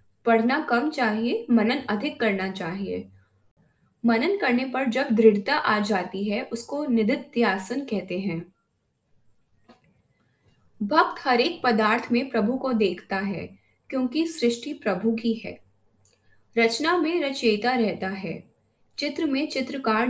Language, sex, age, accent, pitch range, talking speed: Hindi, female, 20-39, native, 195-265 Hz, 120 wpm